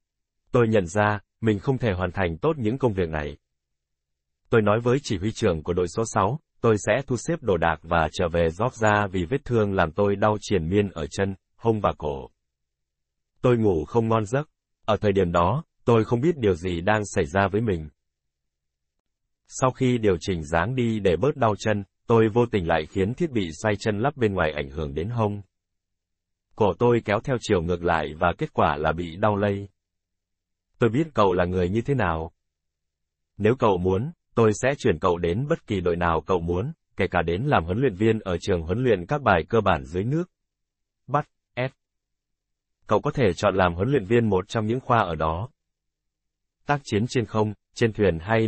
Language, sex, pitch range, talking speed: Vietnamese, male, 85-115 Hz, 210 wpm